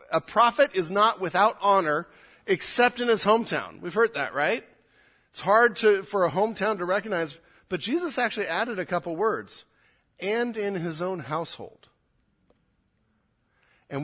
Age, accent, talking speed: 40-59, American, 145 wpm